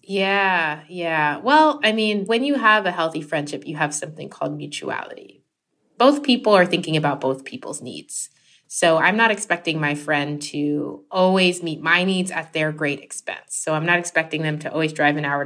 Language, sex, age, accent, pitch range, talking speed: English, female, 20-39, American, 150-205 Hz, 190 wpm